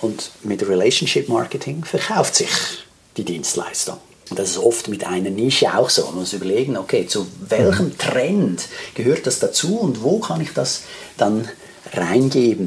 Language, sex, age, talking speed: German, male, 50-69, 150 wpm